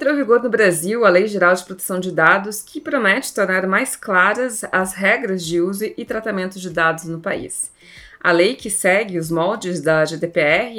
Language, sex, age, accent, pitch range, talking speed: Portuguese, female, 20-39, Brazilian, 175-230 Hz, 195 wpm